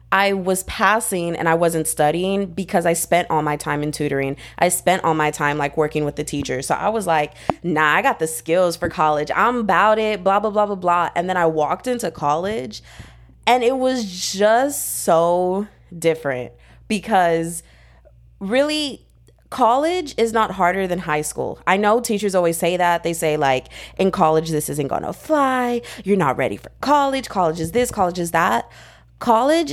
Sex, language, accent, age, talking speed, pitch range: female, English, American, 20-39, 190 wpm, 155-210 Hz